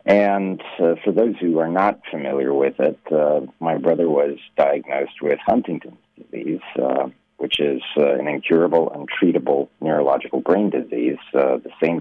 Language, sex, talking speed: English, male, 155 wpm